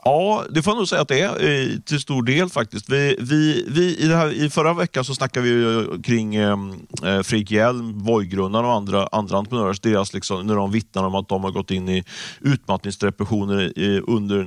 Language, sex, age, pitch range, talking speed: Swedish, male, 30-49, 100-120 Hz, 200 wpm